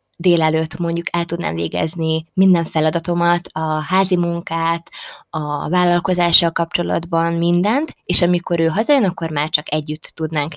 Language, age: Hungarian, 20-39